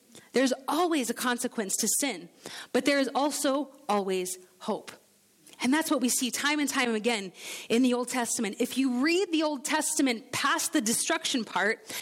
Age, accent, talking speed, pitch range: 30-49, American, 175 wpm, 225-290 Hz